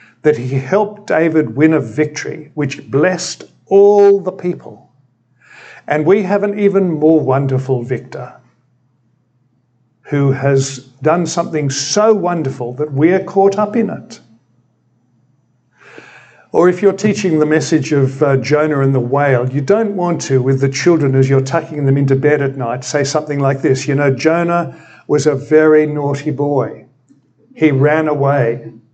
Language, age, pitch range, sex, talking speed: English, 60-79, 135-160 Hz, male, 155 wpm